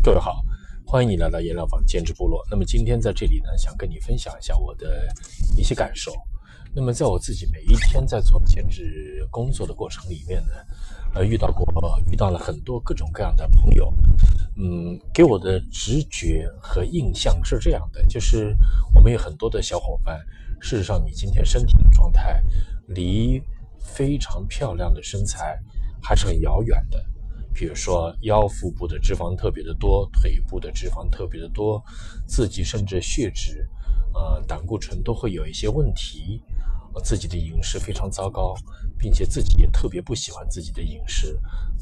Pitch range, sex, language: 80-105 Hz, male, Chinese